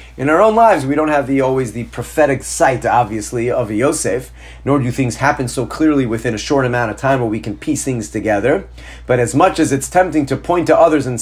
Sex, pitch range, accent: male, 120-175 Hz, American